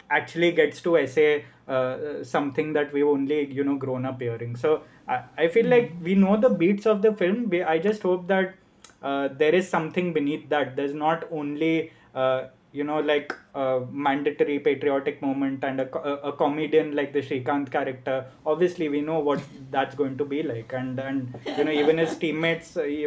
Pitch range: 145-175 Hz